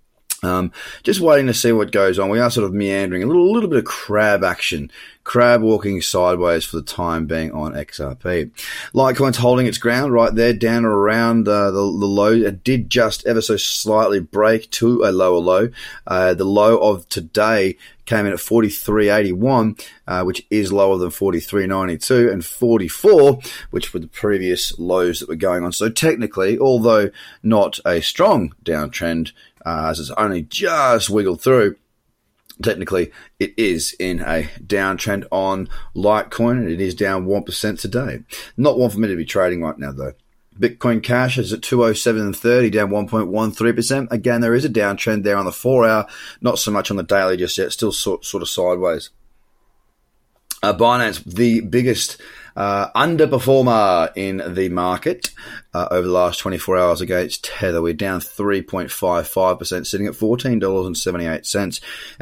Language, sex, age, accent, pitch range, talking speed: English, male, 30-49, Australian, 90-115 Hz, 160 wpm